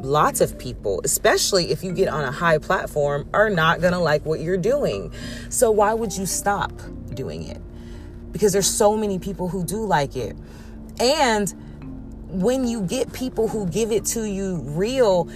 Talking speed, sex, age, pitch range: 180 wpm, female, 30-49, 170-240 Hz